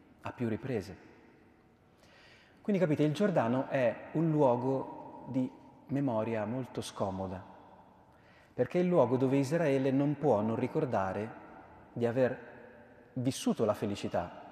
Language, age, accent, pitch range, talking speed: Italian, 30-49, native, 105-140 Hz, 115 wpm